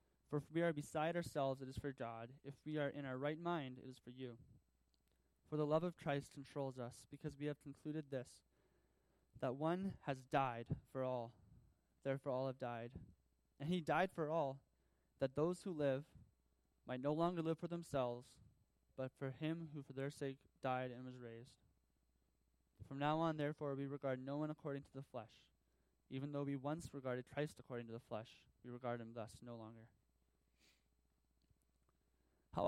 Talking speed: 180 wpm